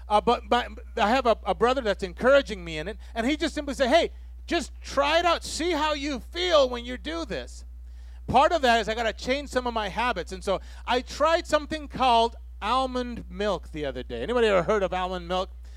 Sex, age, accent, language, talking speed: male, 30-49, American, English, 230 wpm